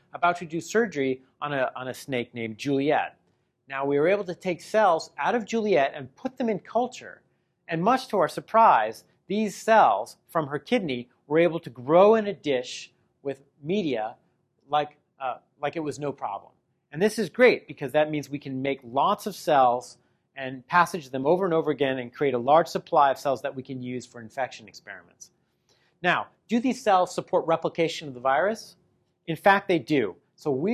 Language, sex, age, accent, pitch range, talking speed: English, male, 40-59, American, 135-180 Hz, 195 wpm